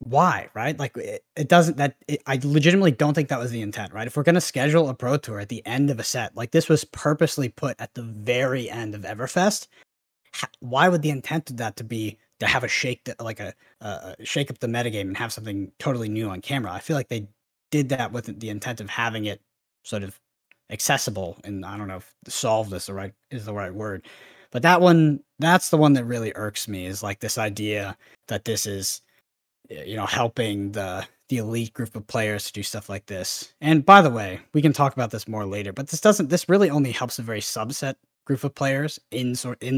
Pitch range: 105-140 Hz